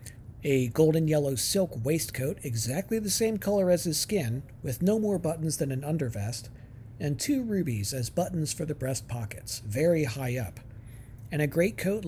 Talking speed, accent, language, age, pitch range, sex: 165 wpm, American, English, 50-69, 120-175 Hz, male